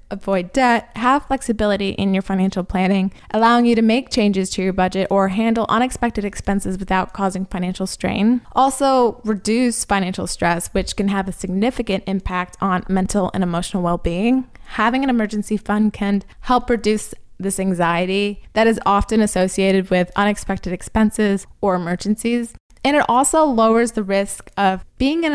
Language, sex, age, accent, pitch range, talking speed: English, female, 20-39, American, 190-235 Hz, 155 wpm